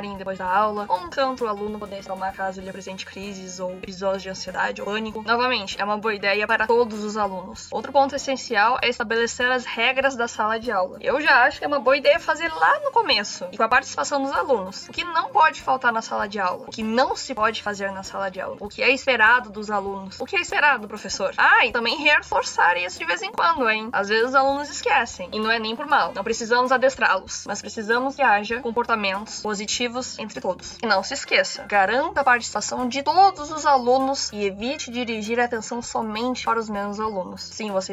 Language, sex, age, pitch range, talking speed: Portuguese, female, 10-29, 200-270 Hz, 230 wpm